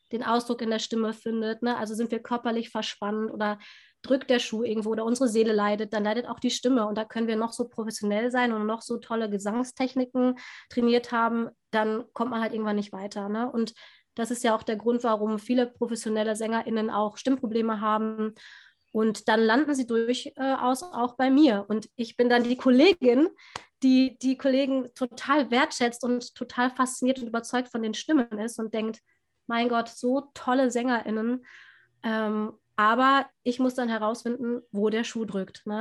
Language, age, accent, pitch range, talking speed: German, 20-39, German, 215-245 Hz, 180 wpm